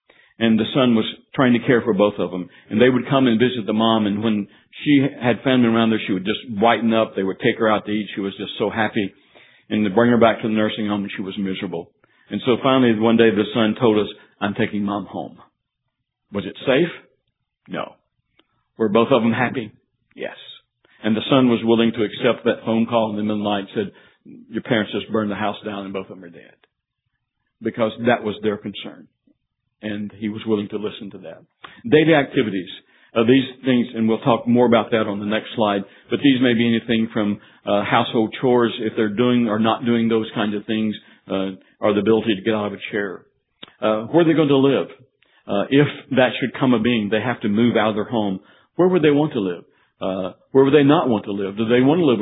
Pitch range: 105-120 Hz